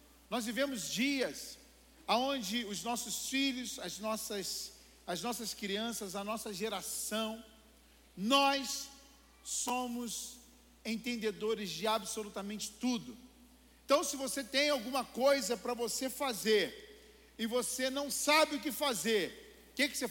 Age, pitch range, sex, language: 50-69, 225-280 Hz, male, Portuguese